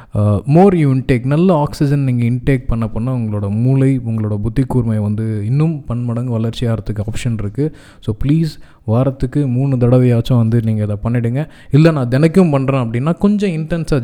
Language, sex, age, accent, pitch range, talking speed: Tamil, male, 20-39, native, 115-135 Hz, 160 wpm